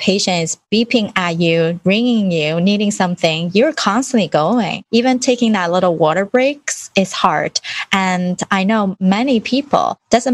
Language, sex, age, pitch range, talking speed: English, female, 20-39, 185-255 Hz, 150 wpm